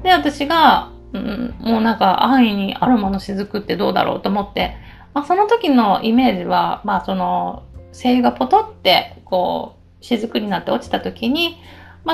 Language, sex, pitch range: Japanese, female, 205-330 Hz